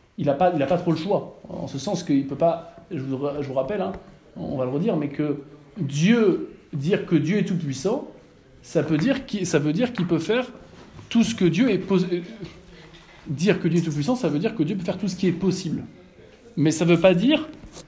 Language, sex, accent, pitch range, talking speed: French, male, French, 150-195 Hz, 235 wpm